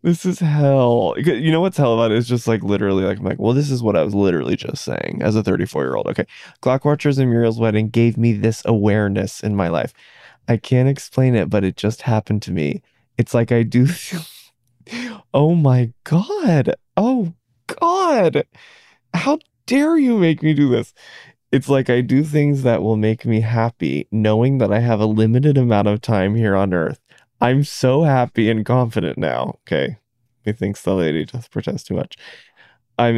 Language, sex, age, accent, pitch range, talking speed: English, male, 20-39, American, 110-135 Hz, 185 wpm